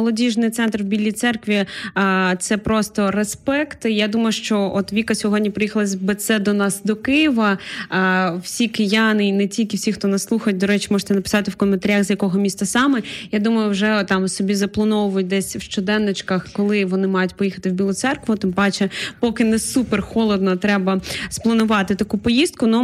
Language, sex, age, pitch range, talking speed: Ukrainian, female, 20-39, 195-230 Hz, 180 wpm